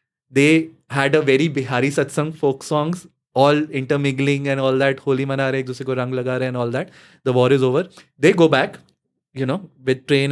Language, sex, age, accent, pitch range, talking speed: English, male, 20-39, Indian, 135-155 Hz, 175 wpm